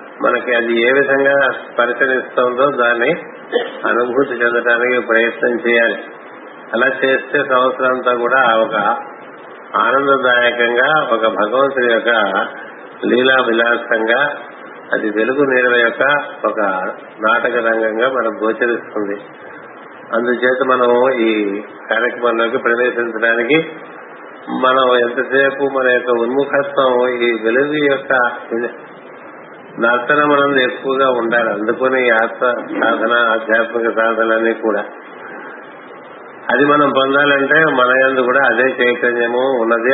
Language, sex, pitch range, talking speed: Telugu, male, 115-130 Hz, 90 wpm